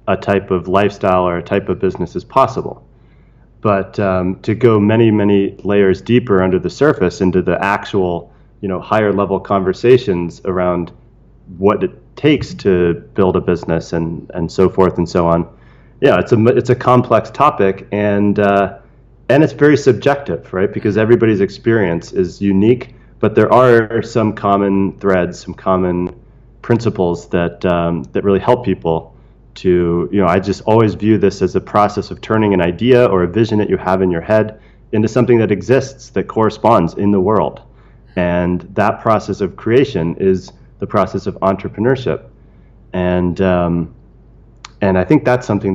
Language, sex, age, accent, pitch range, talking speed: English, male, 30-49, American, 95-120 Hz, 170 wpm